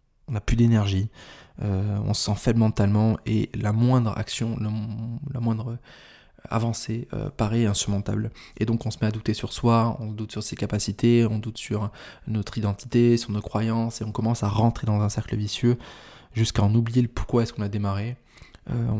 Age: 20-39